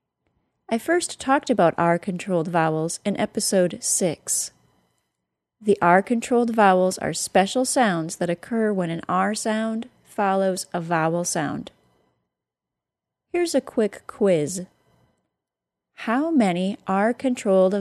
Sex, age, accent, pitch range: female, 30-49, American, 170-225 Hz